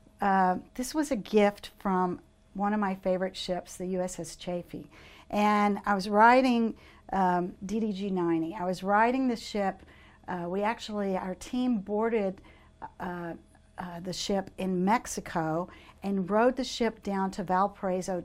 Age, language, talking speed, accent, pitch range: 50-69, English, 145 wpm, American, 185-215 Hz